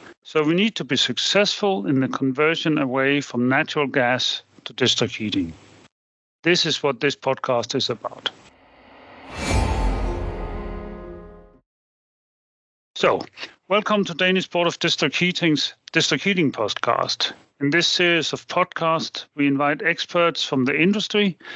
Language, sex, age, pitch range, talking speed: English, male, 40-59, 130-165 Hz, 125 wpm